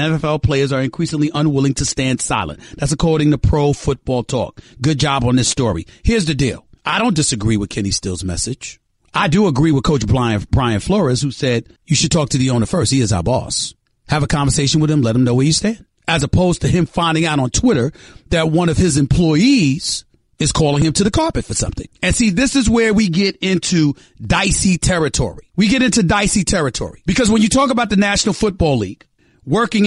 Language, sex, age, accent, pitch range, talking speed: English, male, 40-59, American, 135-200 Hz, 215 wpm